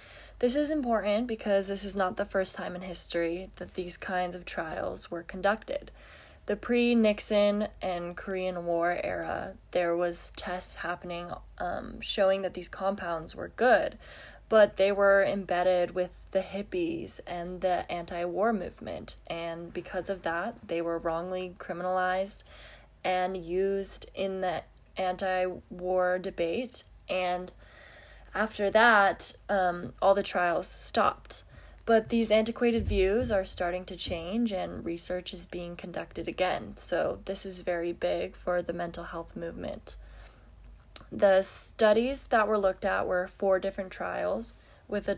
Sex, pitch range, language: female, 180-205 Hz, English